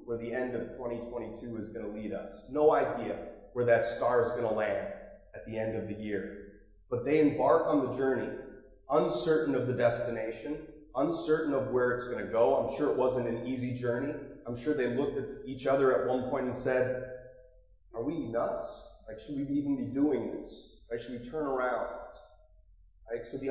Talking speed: 200 wpm